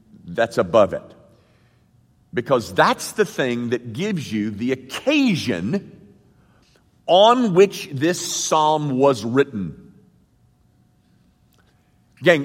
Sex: male